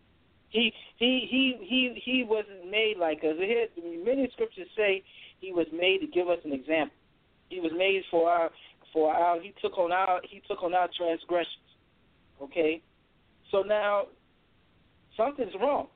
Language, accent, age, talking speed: English, American, 50-69, 155 wpm